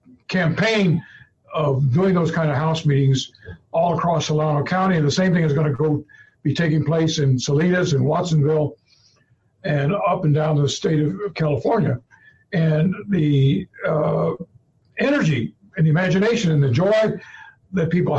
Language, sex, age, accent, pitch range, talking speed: English, male, 60-79, American, 150-185 Hz, 155 wpm